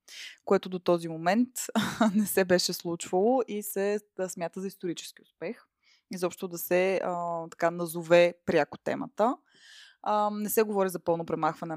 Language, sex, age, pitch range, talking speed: Bulgarian, female, 20-39, 170-205 Hz, 140 wpm